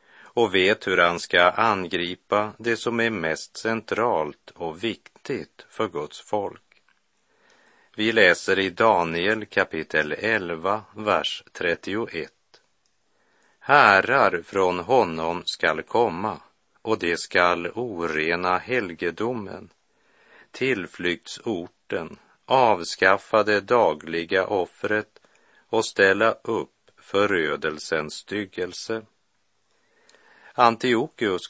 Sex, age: male, 50-69